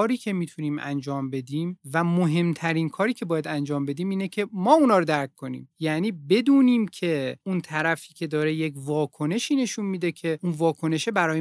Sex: male